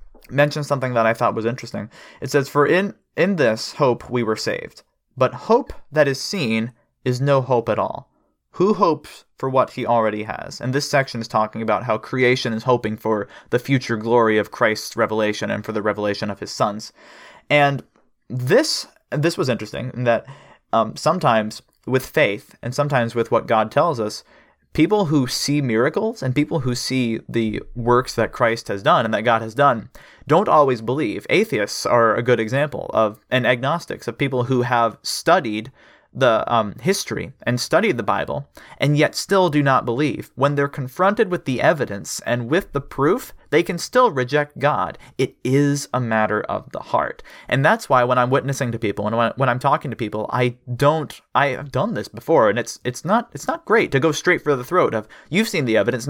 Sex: male